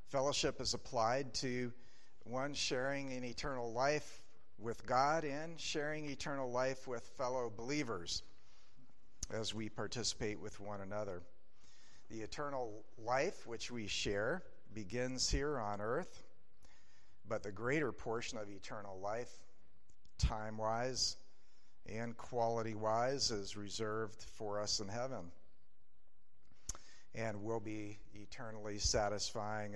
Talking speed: 110 wpm